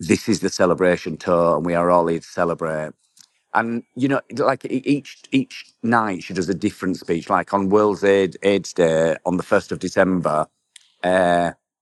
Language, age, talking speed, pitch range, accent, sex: English, 40-59, 185 wpm, 90-105 Hz, British, male